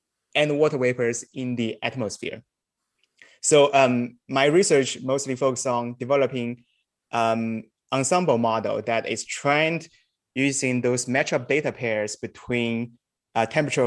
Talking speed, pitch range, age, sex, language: 120 wpm, 115-135 Hz, 20-39, male, English